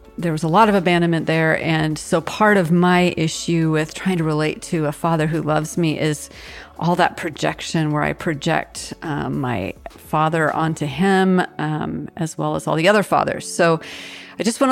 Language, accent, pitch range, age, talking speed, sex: English, American, 160-195 Hz, 40-59, 190 wpm, female